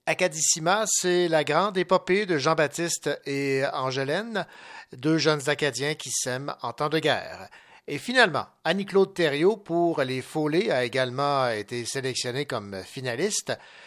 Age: 60-79